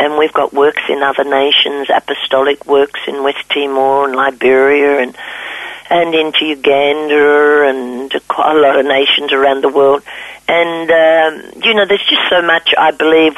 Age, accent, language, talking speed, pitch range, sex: 50-69, Australian, English, 165 wpm, 145-165 Hz, female